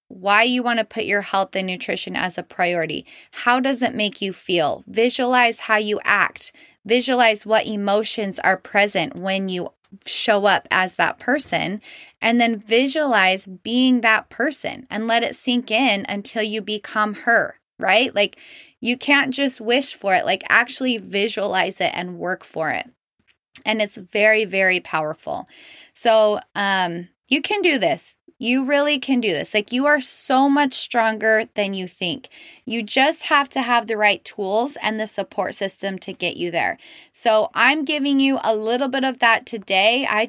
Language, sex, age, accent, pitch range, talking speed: English, female, 20-39, American, 195-250 Hz, 175 wpm